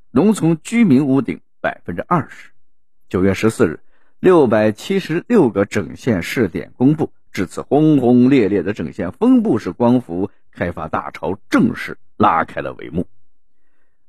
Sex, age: male, 50-69